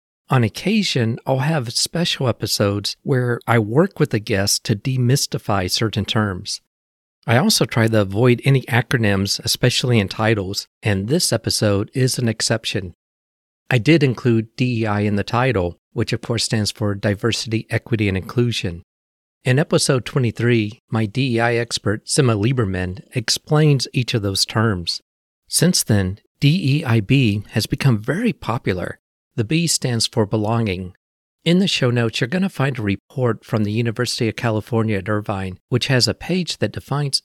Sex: male